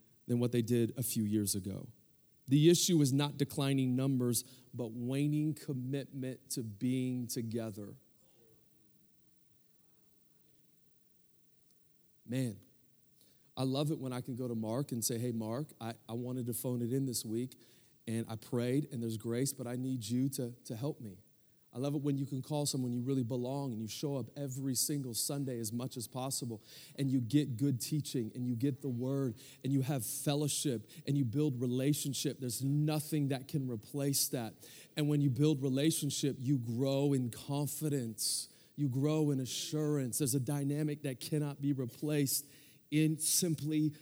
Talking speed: 170 wpm